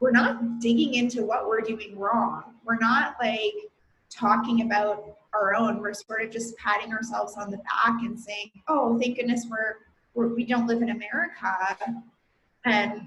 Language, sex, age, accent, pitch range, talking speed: English, female, 20-39, American, 220-285 Hz, 170 wpm